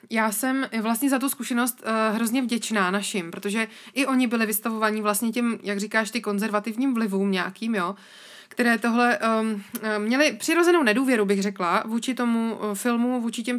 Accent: native